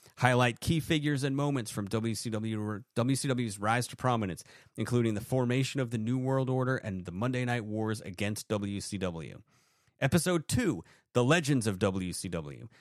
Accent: American